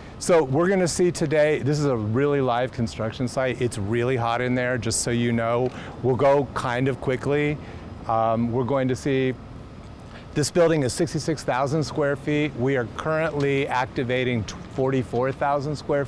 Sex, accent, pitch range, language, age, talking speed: male, American, 115-145 Hz, English, 30-49, 160 wpm